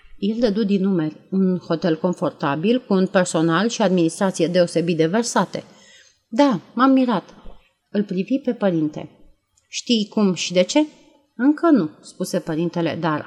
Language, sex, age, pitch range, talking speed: Romanian, female, 30-49, 175-230 Hz, 145 wpm